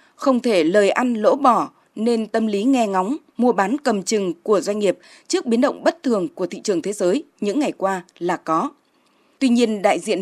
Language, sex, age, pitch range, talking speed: Vietnamese, female, 20-39, 205-290 Hz, 215 wpm